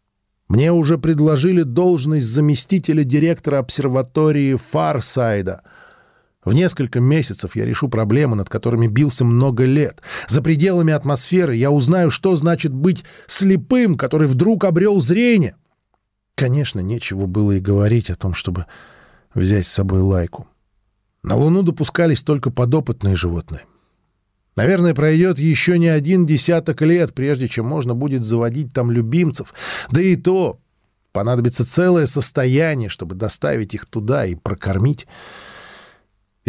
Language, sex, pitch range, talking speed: Russian, male, 110-160 Hz, 125 wpm